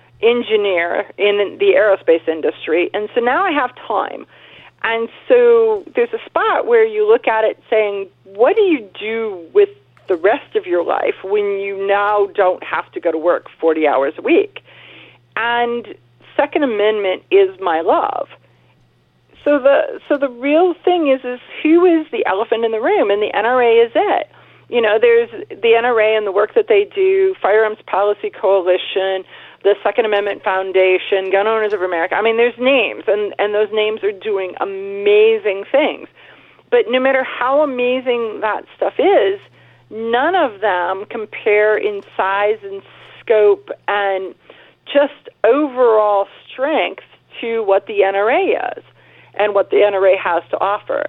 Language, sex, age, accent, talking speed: English, female, 40-59, American, 160 wpm